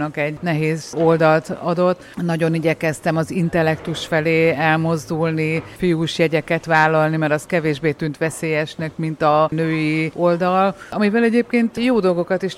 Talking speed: 130 wpm